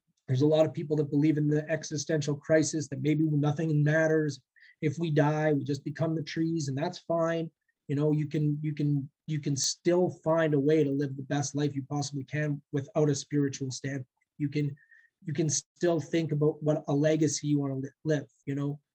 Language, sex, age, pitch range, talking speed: English, male, 30-49, 145-175 Hz, 210 wpm